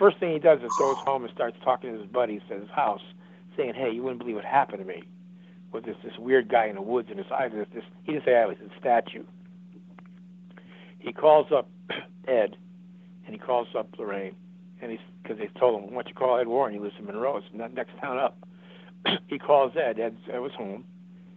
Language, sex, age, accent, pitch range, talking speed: English, male, 60-79, American, 125-180 Hz, 220 wpm